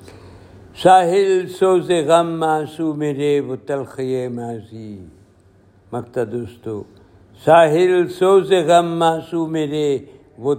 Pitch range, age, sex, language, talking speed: 95-150 Hz, 60-79, male, Urdu, 90 wpm